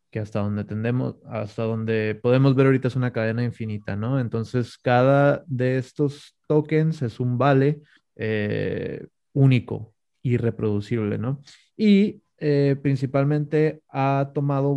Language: Spanish